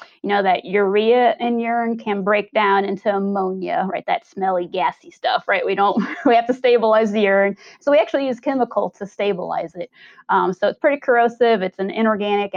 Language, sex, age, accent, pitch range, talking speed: English, female, 30-49, American, 200-255 Hz, 190 wpm